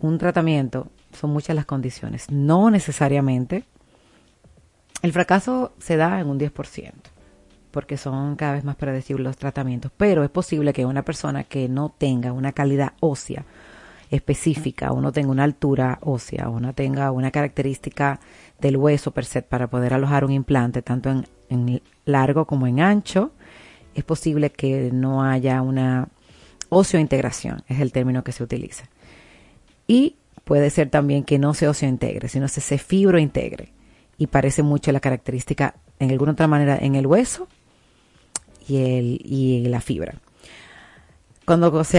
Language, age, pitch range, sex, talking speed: Spanish, 30-49, 135-160 Hz, female, 160 wpm